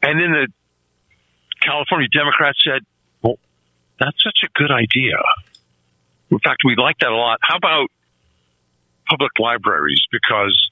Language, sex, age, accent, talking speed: English, male, 50-69, American, 135 wpm